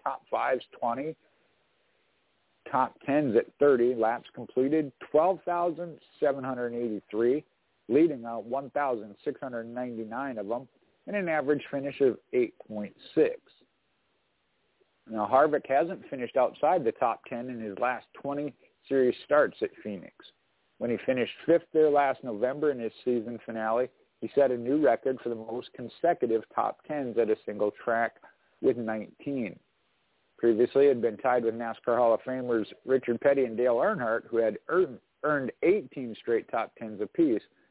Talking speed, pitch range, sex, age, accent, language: 140 wpm, 115-170 Hz, male, 50-69, American, English